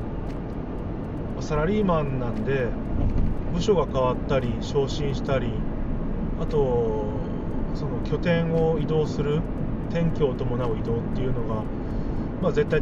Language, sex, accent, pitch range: Japanese, male, native, 95-145 Hz